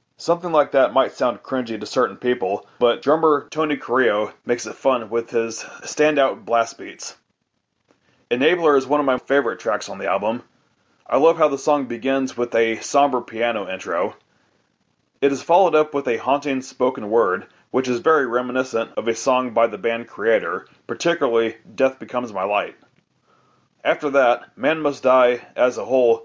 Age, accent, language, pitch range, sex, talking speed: 30-49, American, English, 115-140 Hz, male, 170 wpm